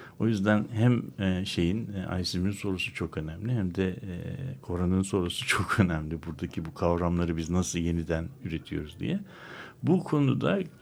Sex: male